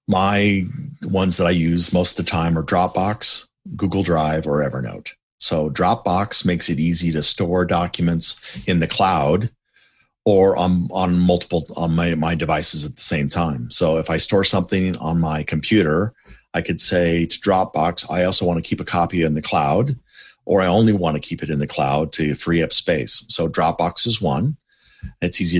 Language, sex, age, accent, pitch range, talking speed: English, male, 40-59, American, 75-90 Hz, 190 wpm